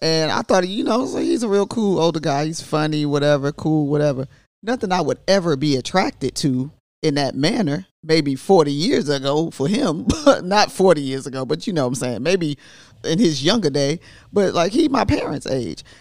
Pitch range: 145-180 Hz